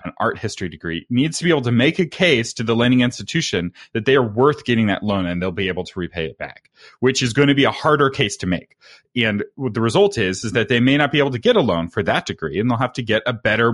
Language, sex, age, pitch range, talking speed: English, male, 30-49, 100-130 Hz, 295 wpm